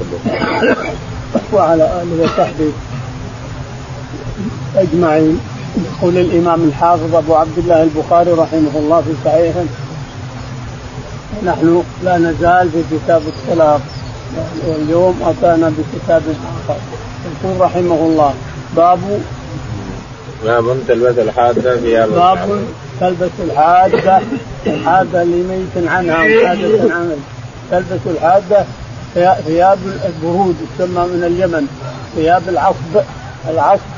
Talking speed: 90 wpm